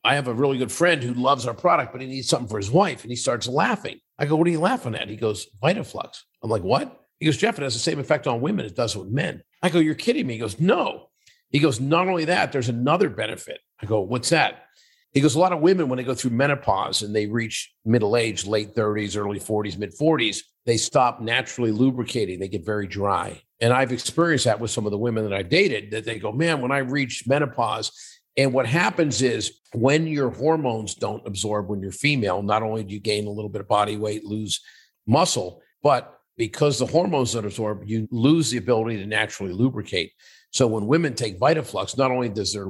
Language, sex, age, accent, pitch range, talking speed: English, male, 50-69, American, 105-145 Hz, 230 wpm